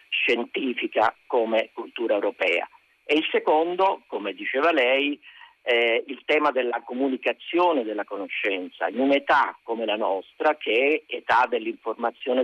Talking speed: 125 wpm